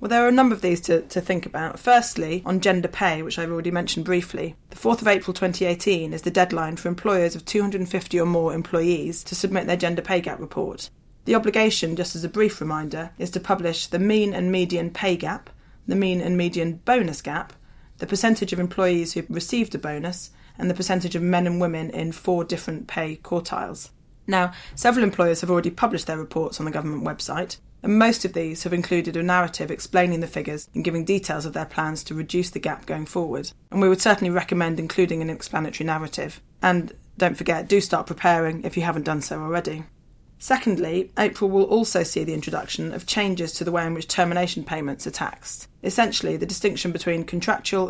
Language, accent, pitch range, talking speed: English, British, 165-190 Hz, 205 wpm